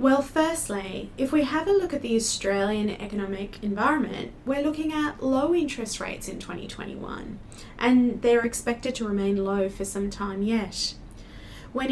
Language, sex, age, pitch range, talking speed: English, female, 20-39, 200-255 Hz, 155 wpm